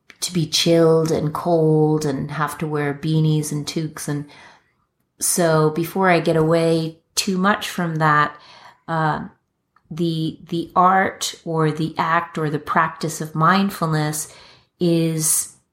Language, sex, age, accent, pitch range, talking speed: English, female, 30-49, American, 155-175 Hz, 135 wpm